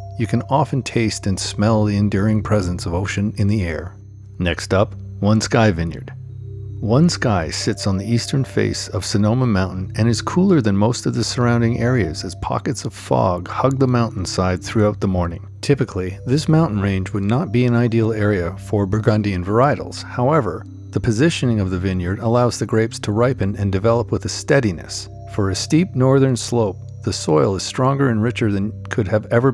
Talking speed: 185 wpm